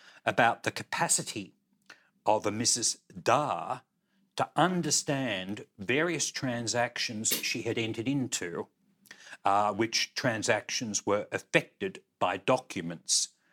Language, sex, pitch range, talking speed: English, male, 105-140 Hz, 100 wpm